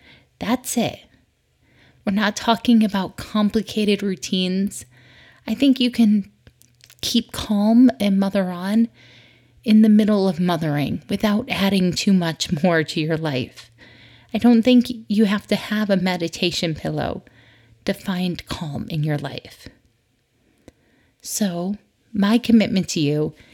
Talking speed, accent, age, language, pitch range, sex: 130 wpm, American, 30-49, English, 155-210 Hz, female